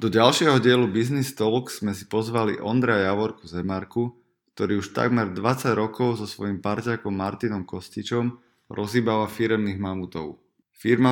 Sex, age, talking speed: male, 20-39, 135 wpm